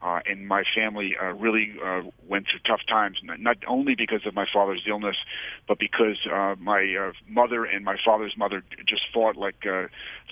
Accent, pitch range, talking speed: American, 100-110 Hz, 185 wpm